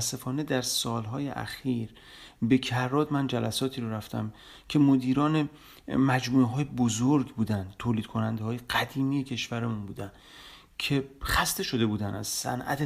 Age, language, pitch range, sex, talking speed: 40-59, Persian, 110-140 Hz, male, 130 wpm